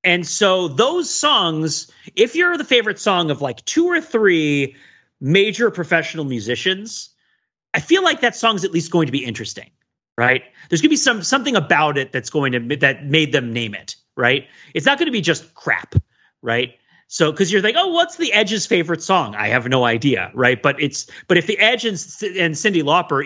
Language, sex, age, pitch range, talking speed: English, male, 30-49, 135-200 Hz, 215 wpm